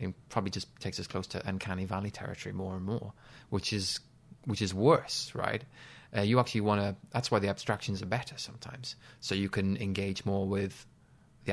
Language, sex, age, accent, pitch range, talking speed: English, male, 20-39, British, 100-120 Hz, 195 wpm